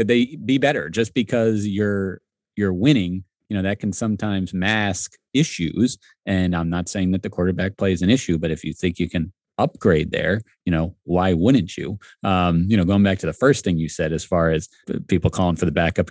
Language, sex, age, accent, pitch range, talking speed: English, male, 30-49, American, 85-105 Hz, 210 wpm